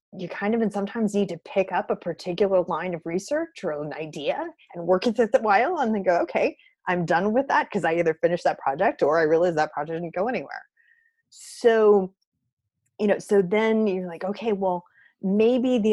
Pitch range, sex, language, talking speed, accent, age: 155-215 Hz, female, English, 210 wpm, American, 30-49